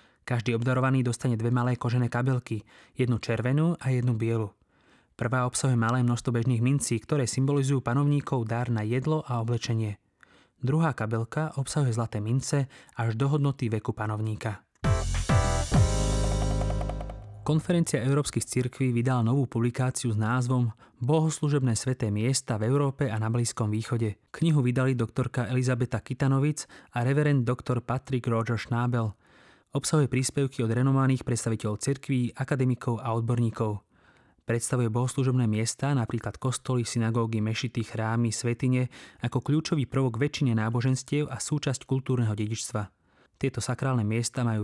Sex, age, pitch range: male, 20-39, 115-135 Hz